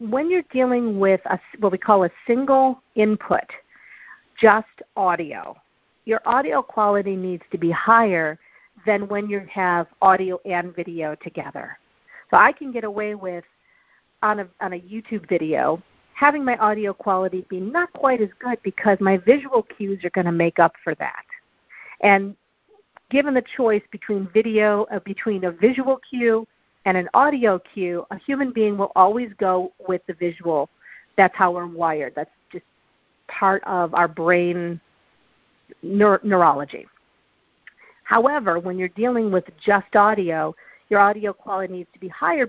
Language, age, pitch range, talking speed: English, 50-69, 185-230 Hz, 155 wpm